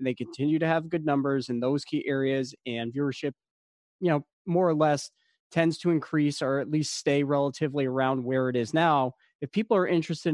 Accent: American